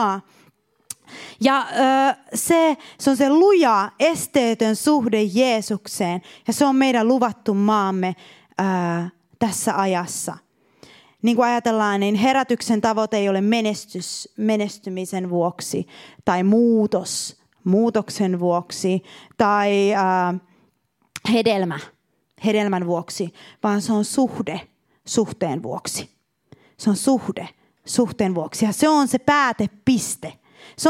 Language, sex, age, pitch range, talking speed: Finnish, female, 30-49, 200-275 Hz, 100 wpm